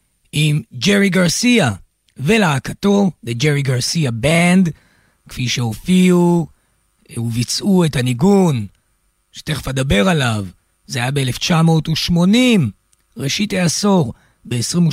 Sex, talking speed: male, 85 wpm